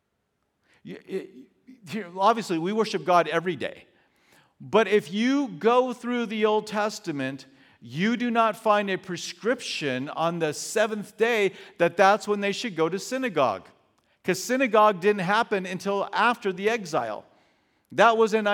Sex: male